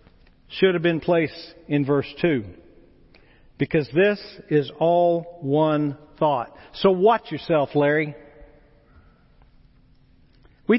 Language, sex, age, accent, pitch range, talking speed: English, male, 50-69, American, 155-235 Hz, 100 wpm